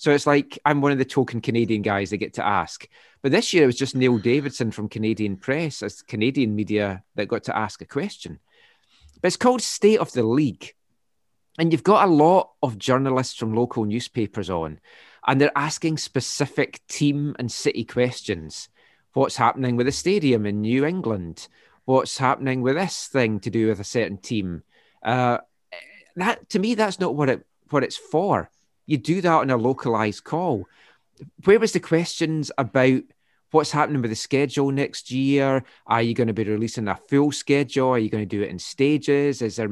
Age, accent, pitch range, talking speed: 30-49, British, 110-145 Hz, 195 wpm